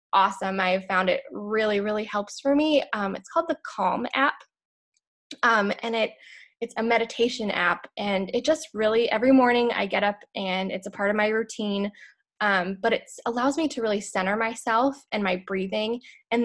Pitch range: 200-260 Hz